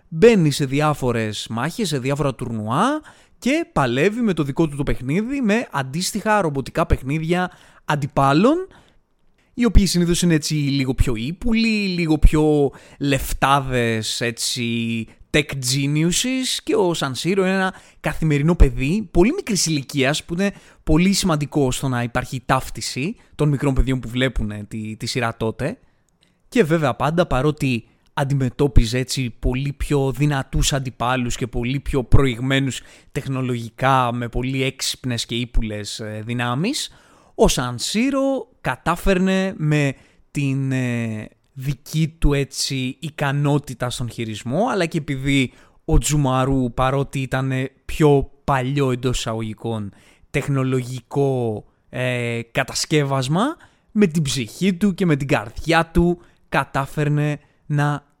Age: 20-39